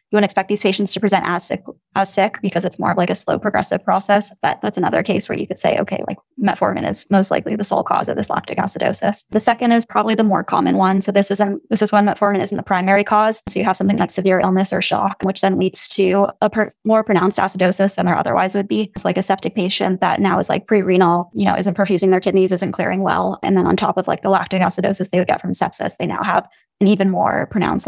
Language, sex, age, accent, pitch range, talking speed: English, female, 10-29, American, 190-210 Hz, 270 wpm